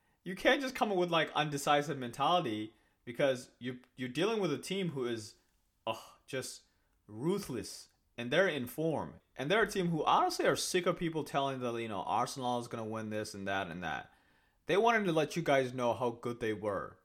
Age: 30-49